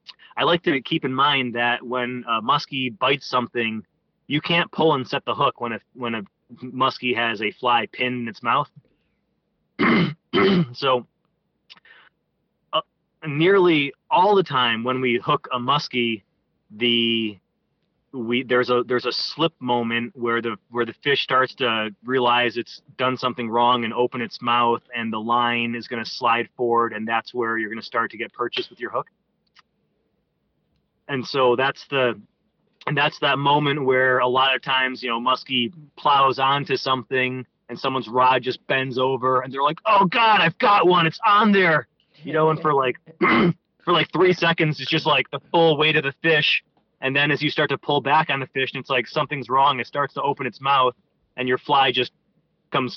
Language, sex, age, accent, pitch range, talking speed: English, male, 30-49, American, 120-155 Hz, 190 wpm